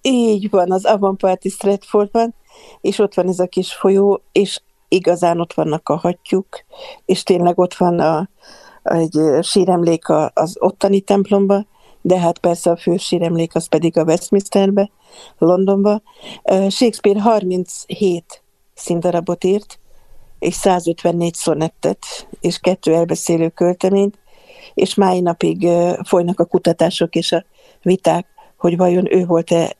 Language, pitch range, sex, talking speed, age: Hungarian, 170-195 Hz, female, 130 wpm, 60-79